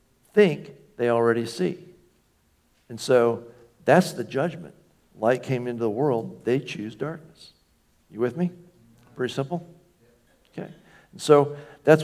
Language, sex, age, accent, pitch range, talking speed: English, male, 60-79, American, 115-155 Hz, 130 wpm